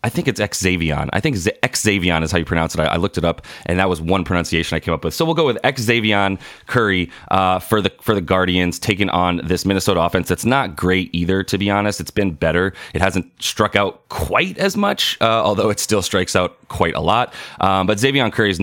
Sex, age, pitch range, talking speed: male, 30-49, 85-100 Hz, 240 wpm